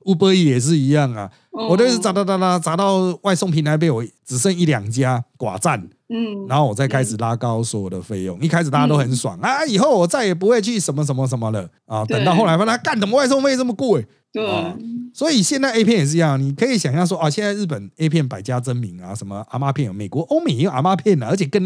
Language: Chinese